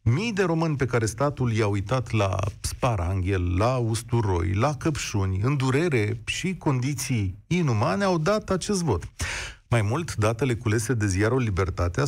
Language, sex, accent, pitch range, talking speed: Romanian, male, native, 105-160 Hz, 150 wpm